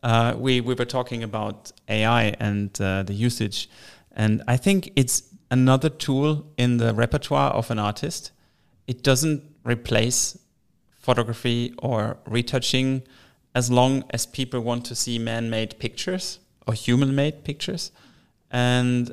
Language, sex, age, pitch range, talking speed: English, male, 30-49, 110-130 Hz, 130 wpm